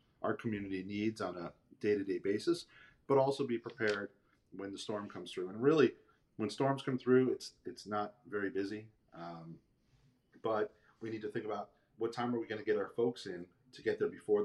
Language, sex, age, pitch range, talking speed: English, male, 30-49, 95-125 Hz, 195 wpm